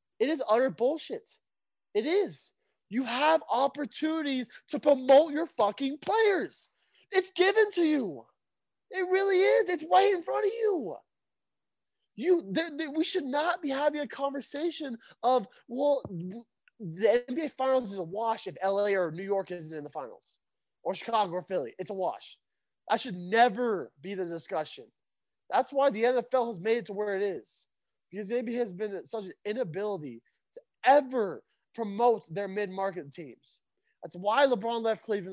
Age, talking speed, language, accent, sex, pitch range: 20-39, 165 wpm, English, American, male, 185-275 Hz